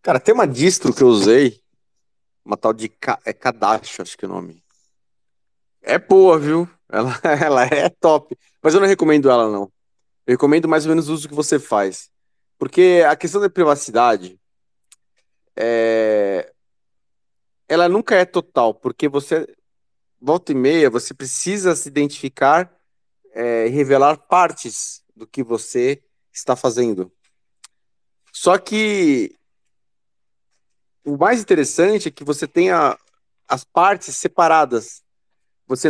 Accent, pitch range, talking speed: Brazilian, 120-180 Hz, 130 wpm